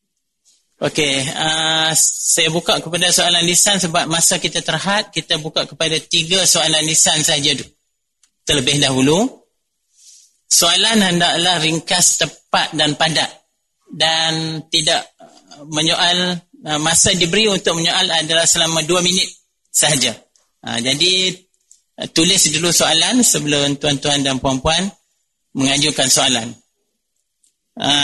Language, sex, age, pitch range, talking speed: Malay, male, 30-49, 155-180 Hz, 115 wpm